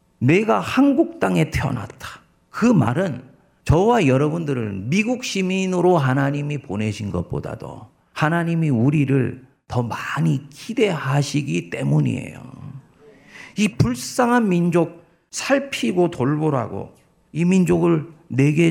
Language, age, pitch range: Korean, 50-69, 125-170 Hz